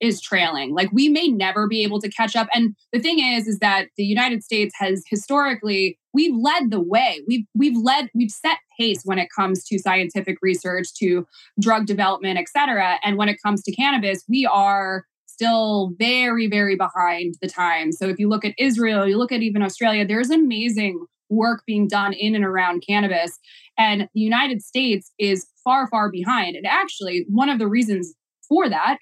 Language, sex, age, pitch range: English, female, 20-39, 195-255 Hz